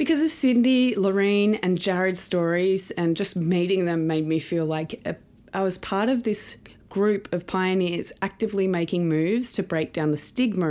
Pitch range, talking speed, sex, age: 155-195 Hz, 180 wpm, female, 20-39